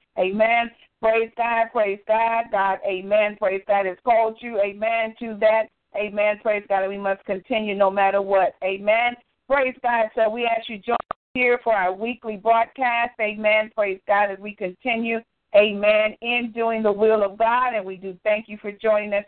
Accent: American